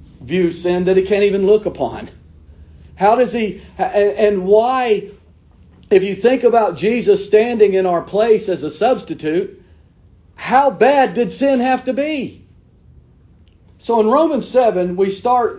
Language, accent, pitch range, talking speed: English, American, 155-255 Hz, 145 wpm